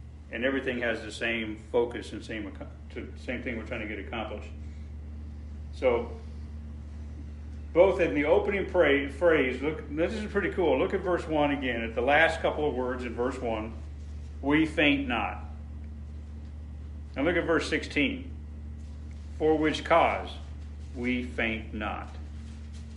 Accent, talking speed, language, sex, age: American, 145 wpm, English, male, 50-69